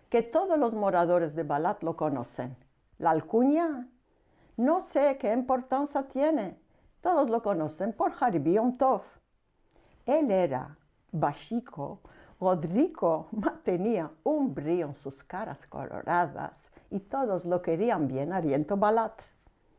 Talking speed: 120 wpm